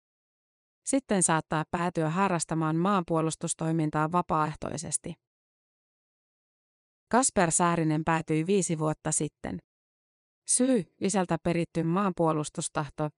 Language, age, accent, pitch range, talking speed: Finnish, 30-49, native, 155-185 Hz, 75 wpm